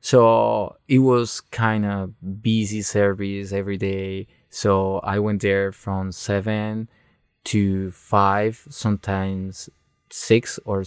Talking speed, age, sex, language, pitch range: 110 wpm, 20-39, male, English, 100-115 Hz